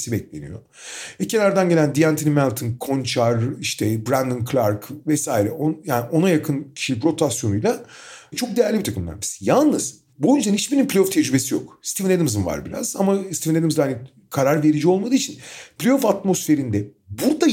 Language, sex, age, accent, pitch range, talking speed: Turkish, male, 40-59, native, 140-205 Hz, 145 wpm